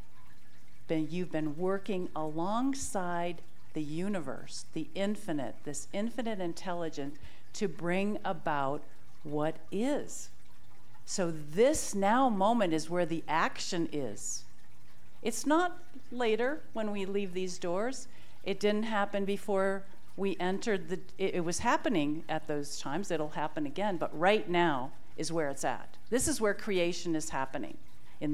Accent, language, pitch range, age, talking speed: American, English, 155-210 Hz, 50-69, 135 wpm